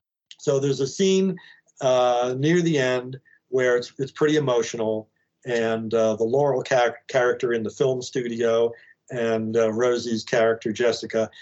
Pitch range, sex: 120-170 Hz, male